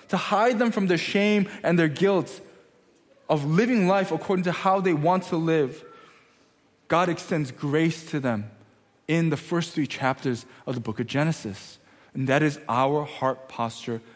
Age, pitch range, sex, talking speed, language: 20-39, 120-180 Hz, male, 170 wpm, English